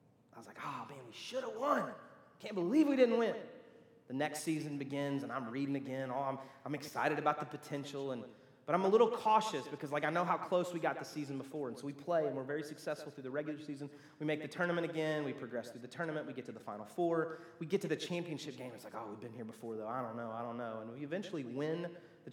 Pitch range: 135-160 Hz